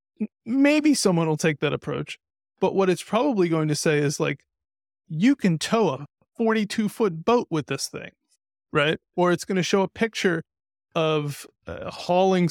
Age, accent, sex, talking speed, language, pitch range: 30-49, American, male, 175 wpm, English, 150-190 Hz